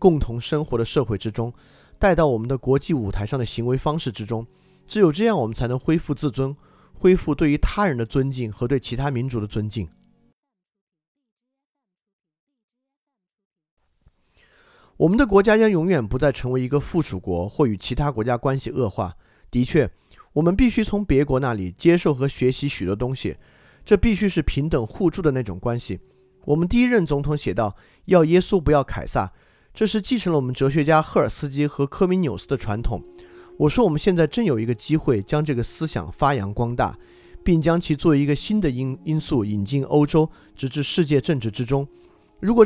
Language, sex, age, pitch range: Chinese, male, 30-49, 120-175 Hz